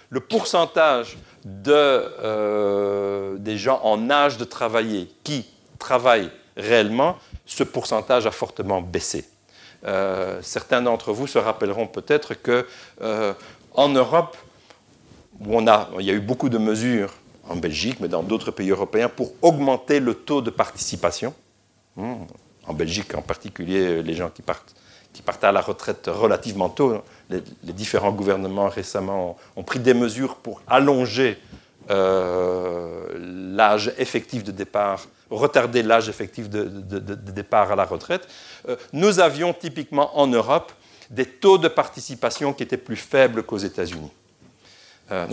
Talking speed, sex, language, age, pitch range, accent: 145 wpm, male, French, 60-79, 100-140 Hz, French